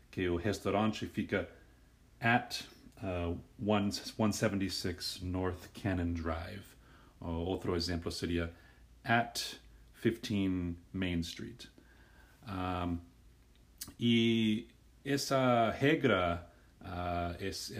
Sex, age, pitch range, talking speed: male, 40-59, 85-110 Hz, 90 wpm